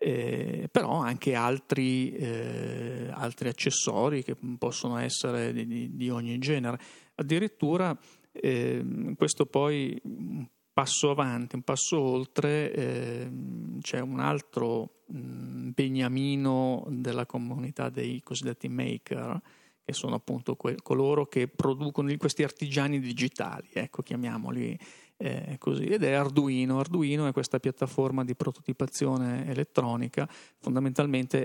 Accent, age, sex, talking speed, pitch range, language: native, 40-59, male, 110 wpm, 125-145 Hz, Italian